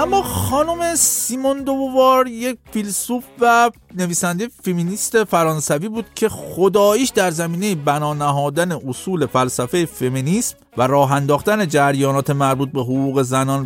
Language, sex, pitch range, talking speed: Persian, male, 145-225 Hz, 125 wpm